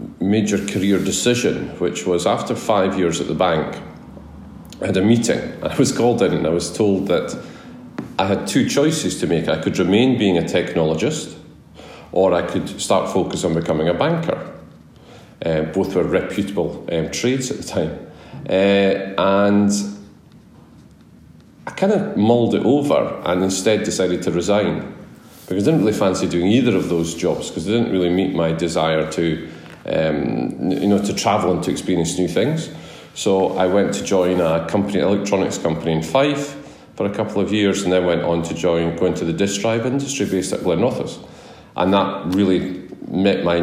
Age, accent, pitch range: 40-59, British, 85-100 Hz